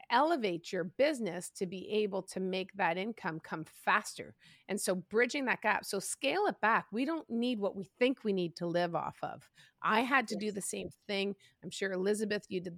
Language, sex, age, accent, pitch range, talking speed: English, female, 30-49, American, 170-210 Hz, 210 wpm